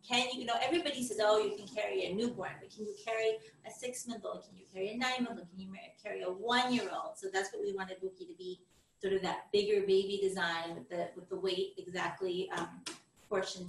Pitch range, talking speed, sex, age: 190-250 Hz, 215 wpm, female, 30-49